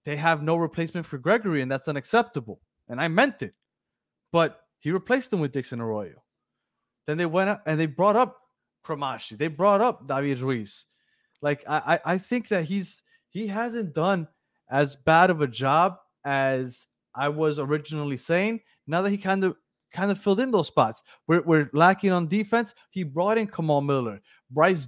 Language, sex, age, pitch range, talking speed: English, male, 20-39, 150-200 Hz, 180 wpm